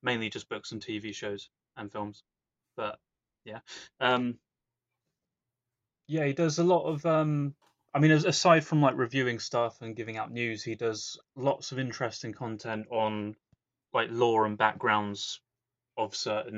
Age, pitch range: 20-39, 110-130 Hz